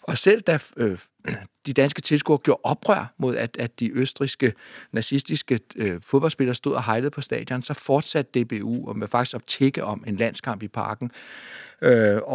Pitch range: 120-150 Hz